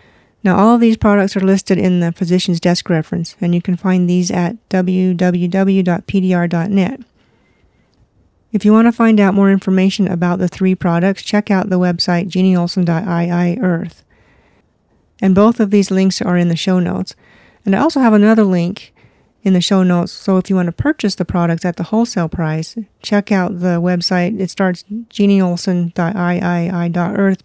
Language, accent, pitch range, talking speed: English, American, 175-205 Hz, 165 wpm